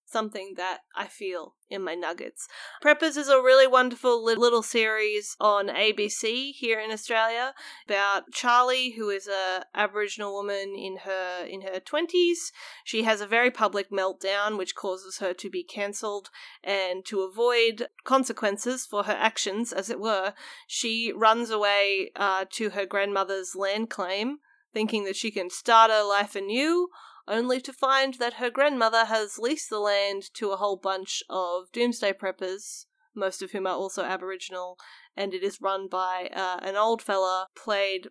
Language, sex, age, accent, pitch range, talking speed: English, female, 30-49, Australian, 195-240 Hz, 160 wpm